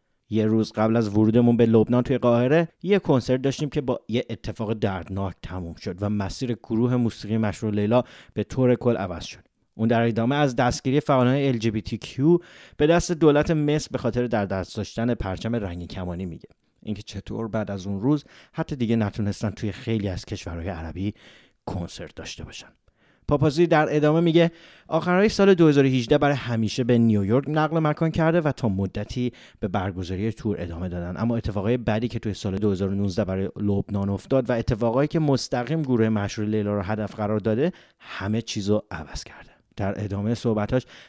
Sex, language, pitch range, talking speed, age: male, English, 100-130 Hz, 175 wpm, 30-49